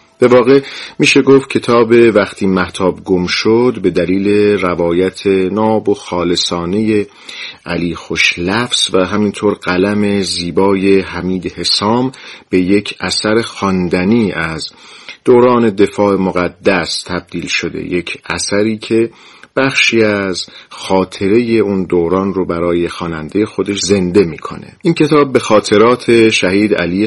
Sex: male